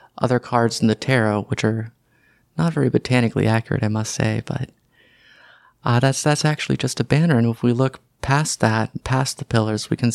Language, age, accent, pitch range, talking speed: English, 30-49, American, 115-125 Hz, 195 wpm